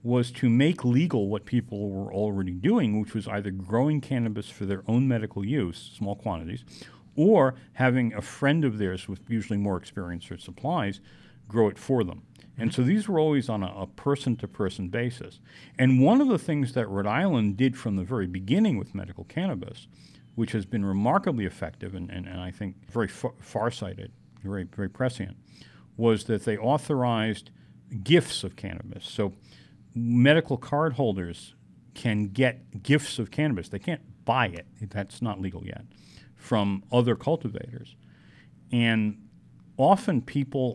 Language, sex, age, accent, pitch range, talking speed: English, male, 50-69, American, 95-125 Hz, 160 wpm